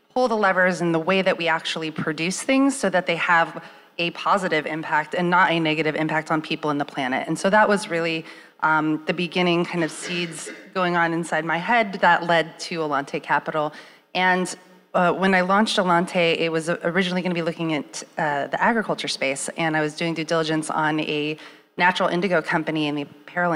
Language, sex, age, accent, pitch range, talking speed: English, female, 30-49, American, 160-185 Hz, 205 wpm